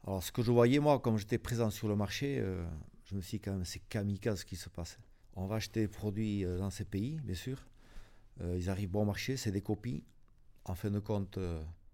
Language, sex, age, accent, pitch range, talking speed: French, male, 50-69, French, 105-125 Hz, 225 wpm